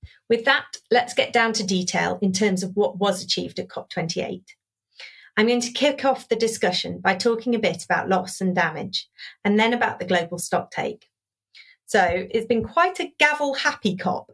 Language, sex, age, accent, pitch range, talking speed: English, female, 40-59, British, 180-230 Hz, 190 wpm